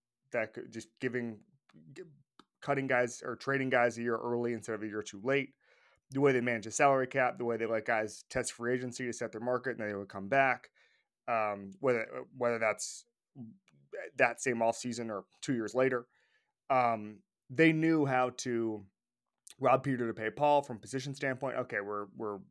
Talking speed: 190 wpm